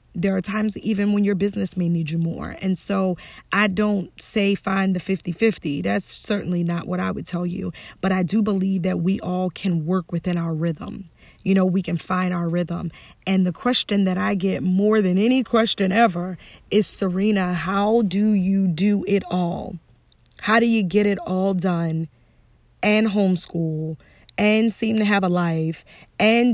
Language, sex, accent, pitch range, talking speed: English, female, American, 185-225 Hz, 185 wpm